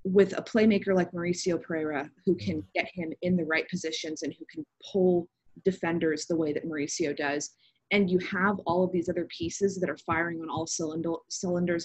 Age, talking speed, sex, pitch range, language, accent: 20-39, 190 wpm, female, 160-185 Hz, English, American